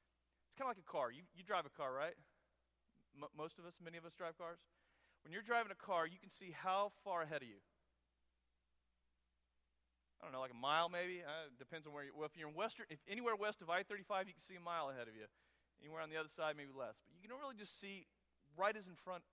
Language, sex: English, male